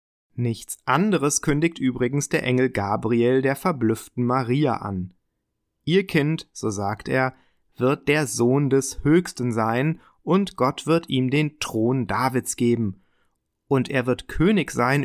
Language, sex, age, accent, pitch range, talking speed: German, male, 30-49, German, 115-145 Hz, 140 wpm